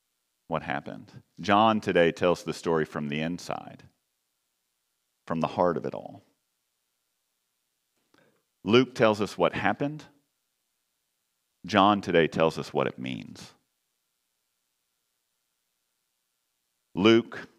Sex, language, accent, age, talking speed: male, English, American, 40-59, 100 wpm